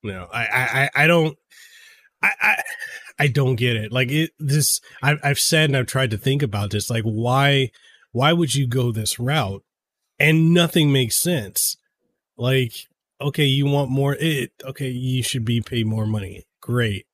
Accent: American